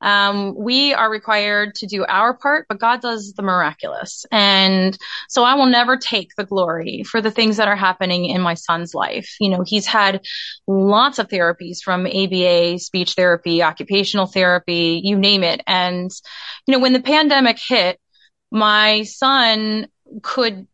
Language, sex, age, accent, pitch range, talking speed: English, female, 30-49, American, 185-230 Hz, 165 wpm